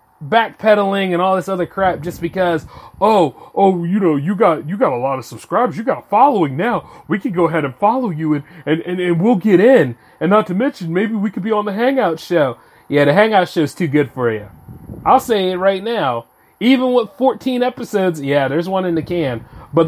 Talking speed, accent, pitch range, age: 225 wpm, American, 155-220 Hz, 30-49